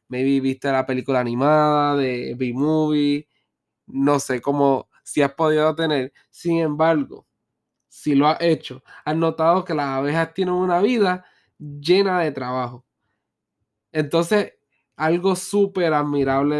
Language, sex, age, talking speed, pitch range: Spanish, male, 20-39, 125 wpm, 135-170 Hz